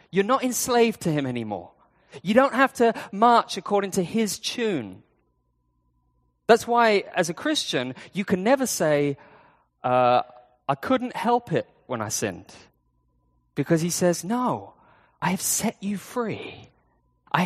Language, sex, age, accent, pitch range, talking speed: English, male, 20-39, British, 140-220 Hz, 145 wpm